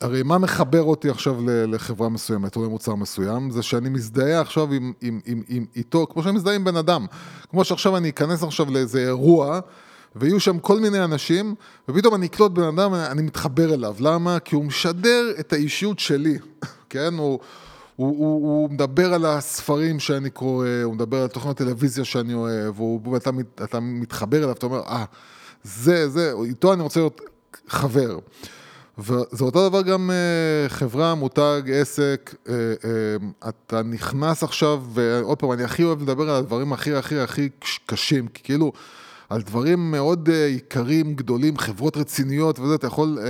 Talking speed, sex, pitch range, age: 165 wpm, male, 125-165 Hz, 20-39